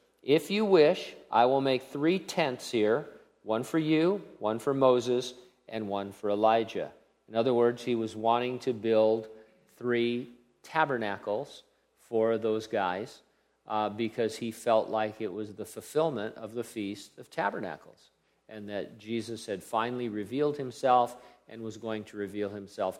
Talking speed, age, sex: 155 wpm, 50-69, male